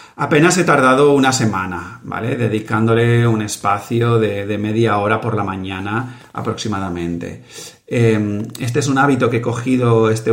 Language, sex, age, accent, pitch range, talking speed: Spanish, male, 40-59, Spanish, 105-130 Hz, 150 wpm